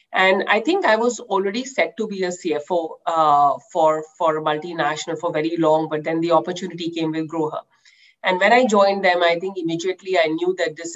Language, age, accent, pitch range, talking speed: English, 30-49, Indian, 160-190 Hz, 205 wpm